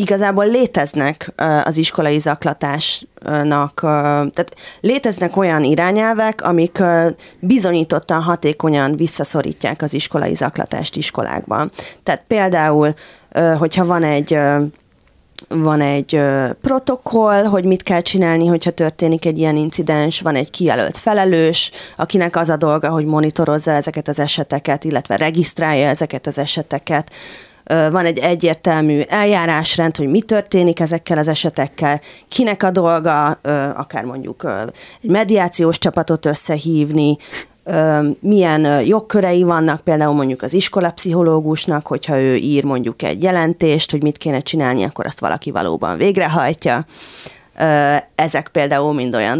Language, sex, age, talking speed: Hungarian, female, 30-49, 120 wpm